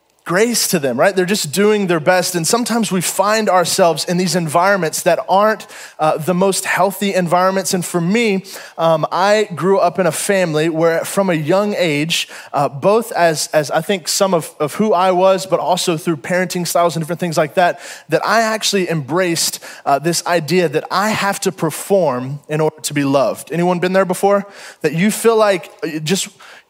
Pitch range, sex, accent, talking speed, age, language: 160-195 Hz, male, American, 195 wpm, 20-39, English